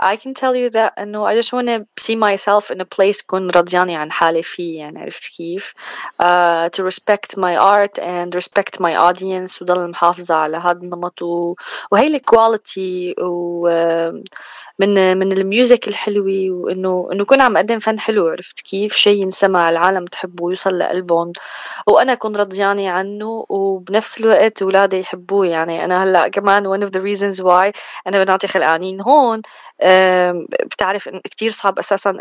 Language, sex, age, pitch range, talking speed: Arabic, female, 20-39, 175-210 Hz, 145 wpm